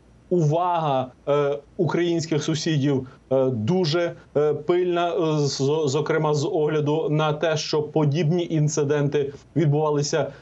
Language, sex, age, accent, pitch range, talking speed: Ukrainian, male, 30-49, native, 145-165 Hz, 80 wpm